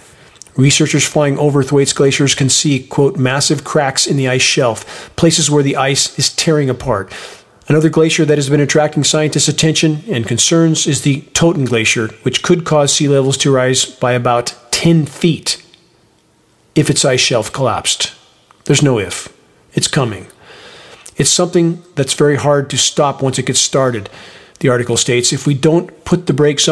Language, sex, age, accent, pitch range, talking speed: English, male, 40-59, American, 135-165 Hz, 170 wpm